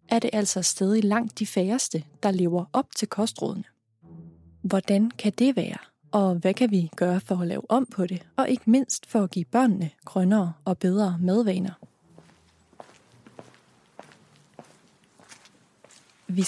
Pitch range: 185-230 Hz